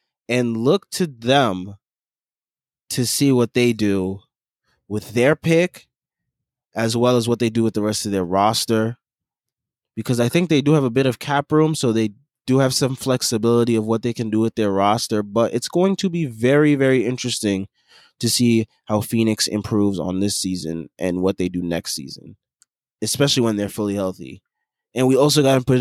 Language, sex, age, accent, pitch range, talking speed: English, male, 20-39, American, 110-135 Hz, 195 wpm